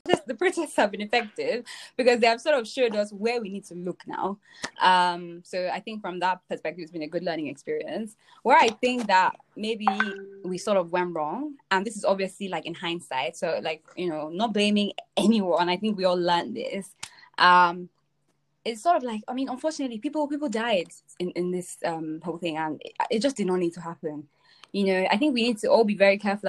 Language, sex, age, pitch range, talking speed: English, female, 10-29, 175-245 Hz, 225 wpm